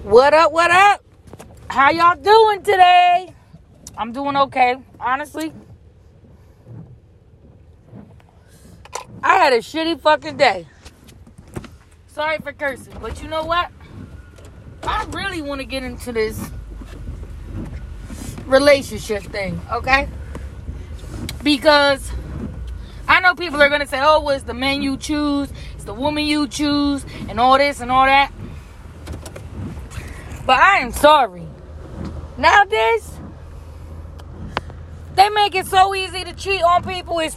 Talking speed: 120 wpm